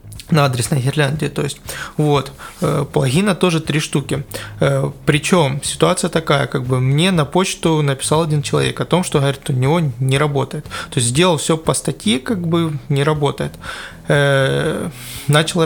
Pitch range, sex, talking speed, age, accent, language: 135-160 Hz, male, 165 wpm, 20-39, native, Russian